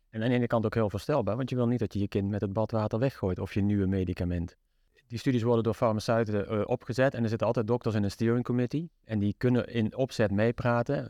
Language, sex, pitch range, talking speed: Dutch, male, 100-120 Hz, 245 wpm